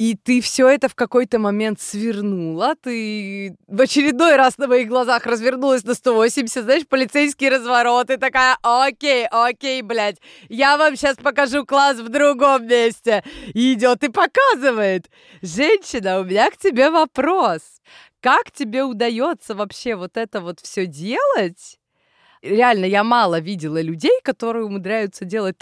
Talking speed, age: 140 wpm, 20-39